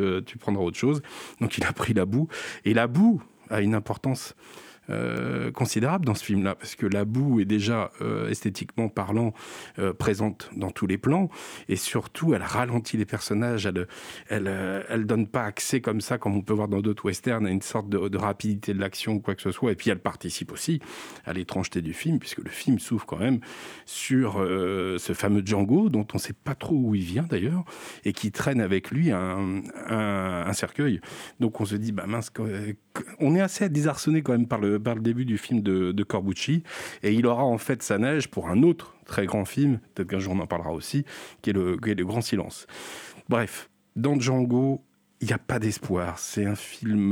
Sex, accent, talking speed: male, French, 215 wpm